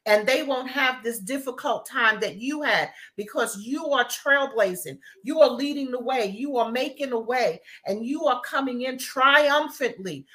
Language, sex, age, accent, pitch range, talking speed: English, female, 40-59, American, 235-290 Hz, 175 wpm